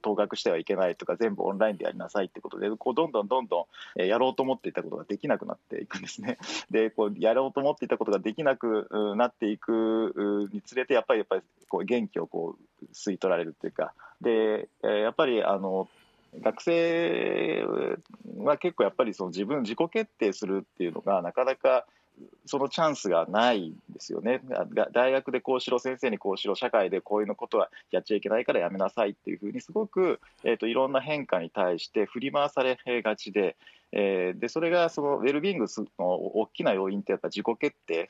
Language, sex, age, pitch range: Japanese, male, 40-59, 105-150 Hz